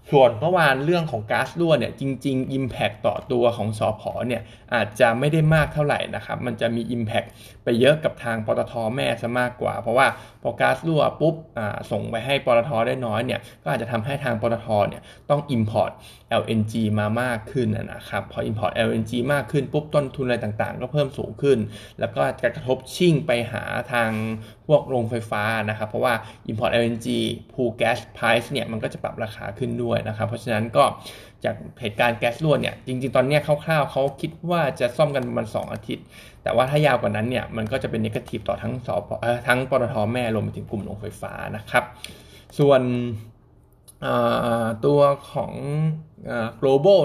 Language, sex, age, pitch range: Thai, male, 20-39, 115-135 Hz